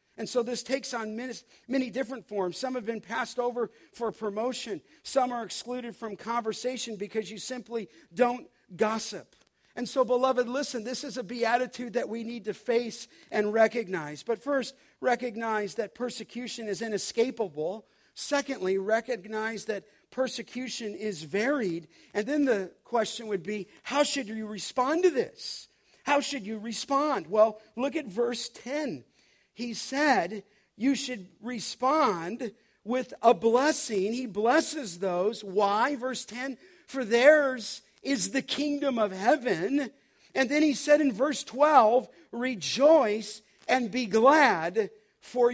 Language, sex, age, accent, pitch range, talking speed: English, male, 50-69, American, 210-265 Hz, 140 wpm